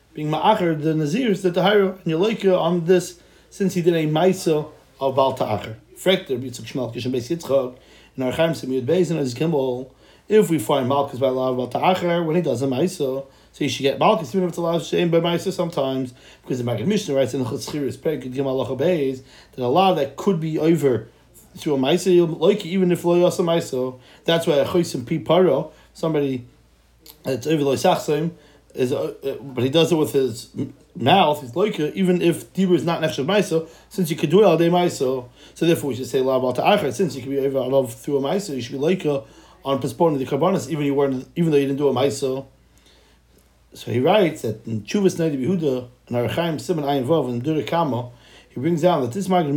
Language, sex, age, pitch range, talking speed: English, male, 30-49, 135-175 Hz, 210 wpm